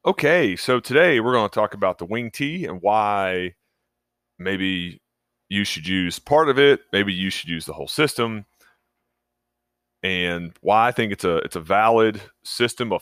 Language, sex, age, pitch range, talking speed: English, male, 30-49, 90-110 Hz, 175 wpm